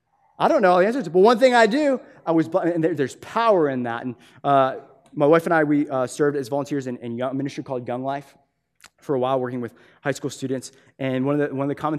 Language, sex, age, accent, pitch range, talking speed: English, male, 20-39, American, 115-140 Hz, 245 wpm